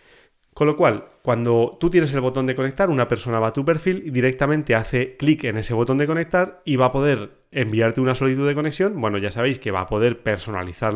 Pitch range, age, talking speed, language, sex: 110-145 Hz, 30-49, 230 wpm, Spanish, male